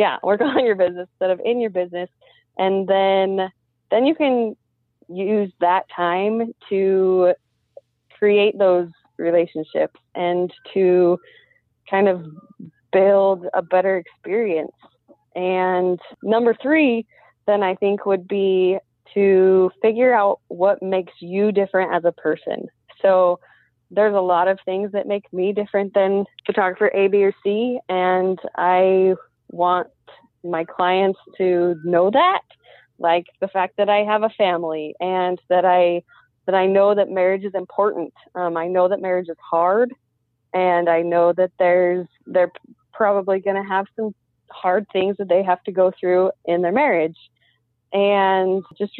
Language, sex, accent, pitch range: English, female, American, 175-200 Hz